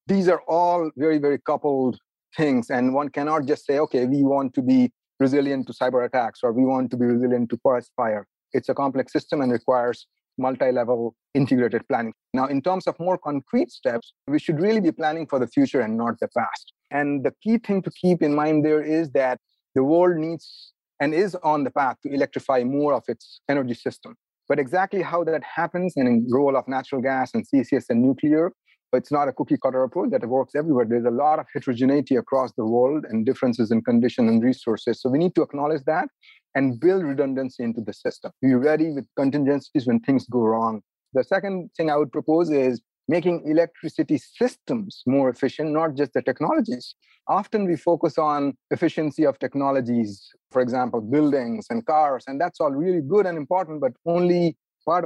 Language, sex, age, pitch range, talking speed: English, male, 30-49, 130-170 Hz, 195 wpm